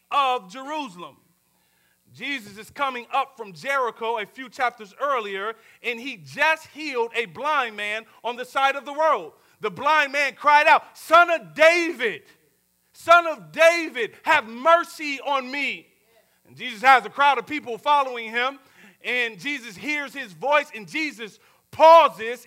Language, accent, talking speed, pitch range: English, American, 150 wpm, 215-295 Hz